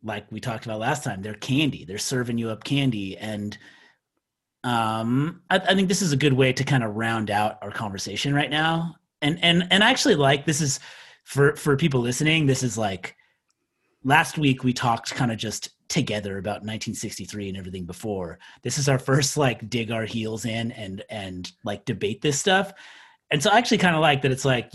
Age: 30-49